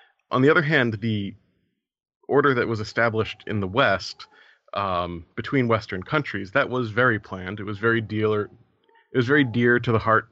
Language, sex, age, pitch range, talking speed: English, male, 30-49, 100-125 Hz, 180 wpm